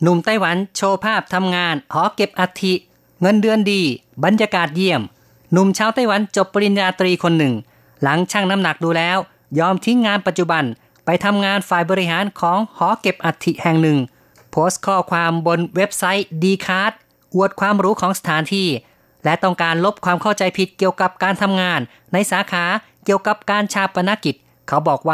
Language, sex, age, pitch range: Thai, female, 30-49, 165-195 Hz